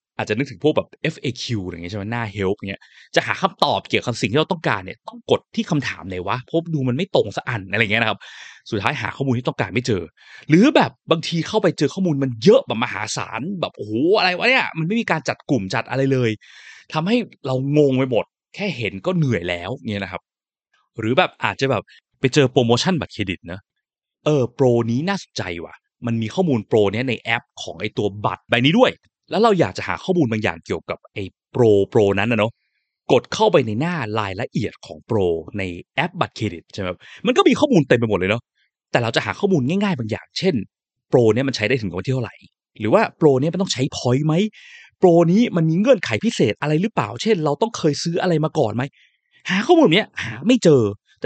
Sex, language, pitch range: male, Thai, 110-170 Hz